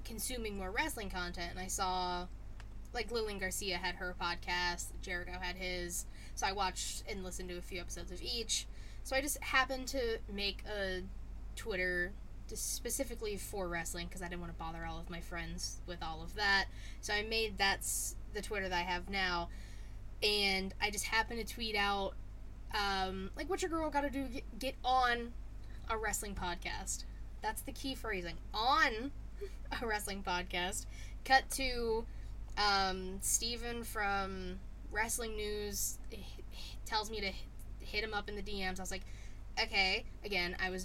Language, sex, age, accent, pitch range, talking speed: English, female, 10-29, American, 165-215 Hz, 165 wpm